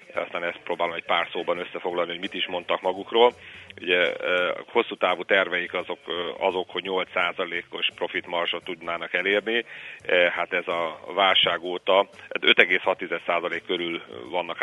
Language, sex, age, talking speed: Hungarian, male, 40-59, 130 wpm